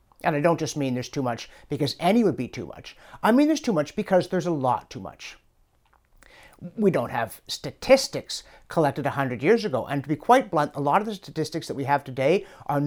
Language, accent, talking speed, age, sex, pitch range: English, American, 225 wpm, 50-69, male, 135-180 Hz